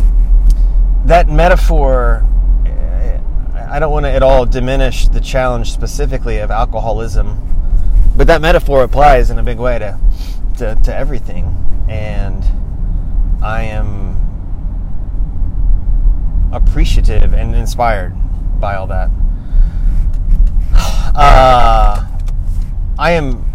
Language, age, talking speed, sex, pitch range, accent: English, 20-39, 90 wpm, male, 90-120 Hz, American